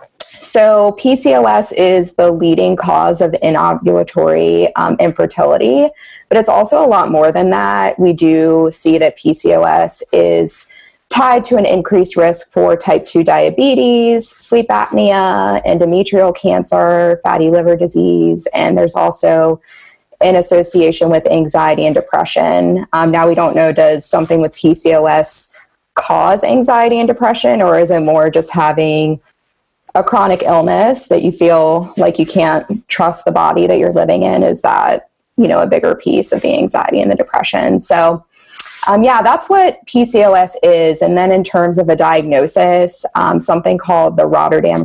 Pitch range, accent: 160-200 Hz, American